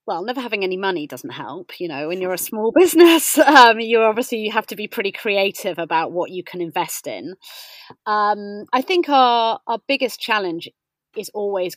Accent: British